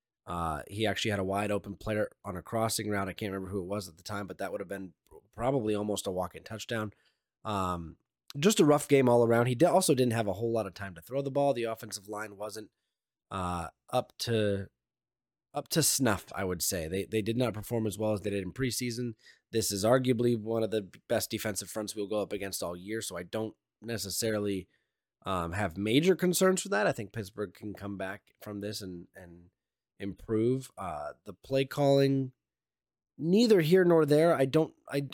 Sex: male